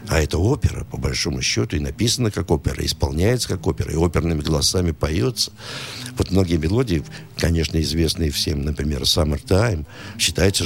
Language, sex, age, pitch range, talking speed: Russian, male, 60-79, 80-120 Hz, 150 wpm